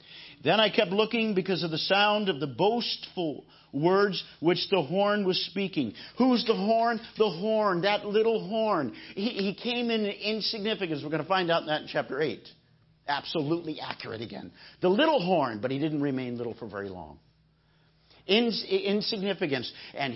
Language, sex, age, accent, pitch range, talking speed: English, male, 50-69, American, 155-210 Hz, 165 wpm